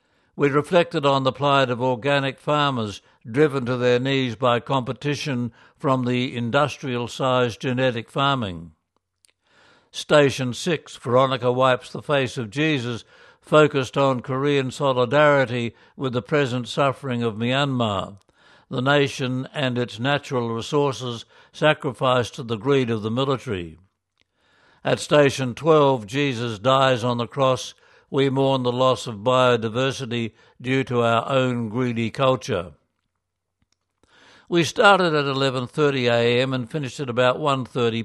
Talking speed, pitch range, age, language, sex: 125 wpm, 120-140 Hz, 60-79, English, male